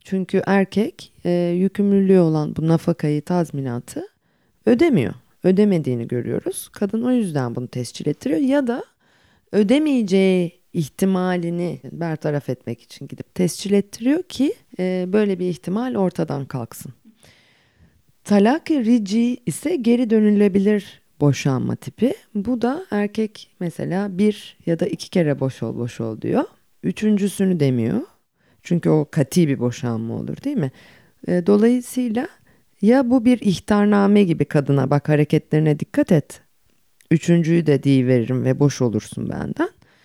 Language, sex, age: English, female, 40-59